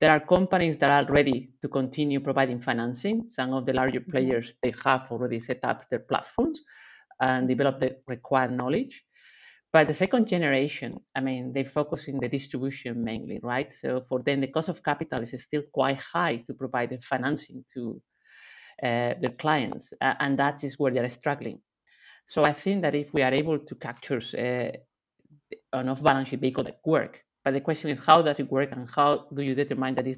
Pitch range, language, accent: 130-150 Hz, English, Spanish